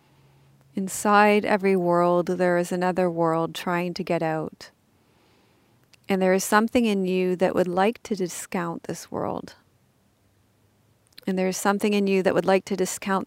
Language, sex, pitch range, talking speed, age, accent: English, female, 170-195 Hz, 160 wpm, 40-59, American